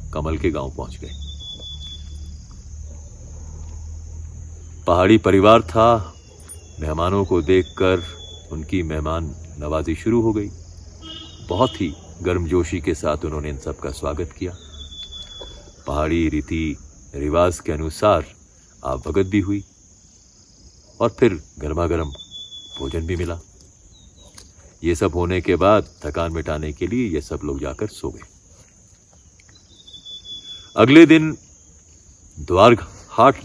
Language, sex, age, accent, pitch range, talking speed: Hindi, male, 40-59, native, 80-100 Hz, 110 wpm